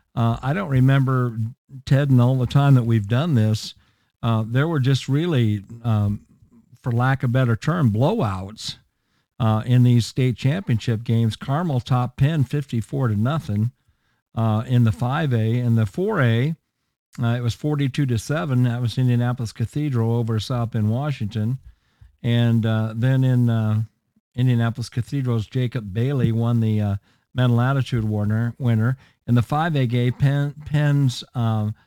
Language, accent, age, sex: English, American, 50-69, male